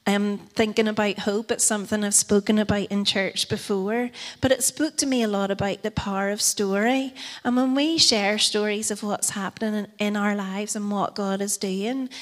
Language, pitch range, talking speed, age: English, 205-230 Hz, 195 wpm, 30-49